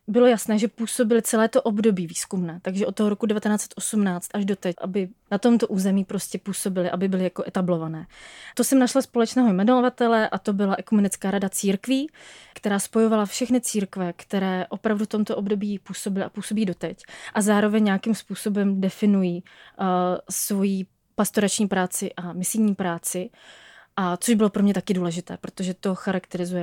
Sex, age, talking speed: female, 20-39, 155 wpm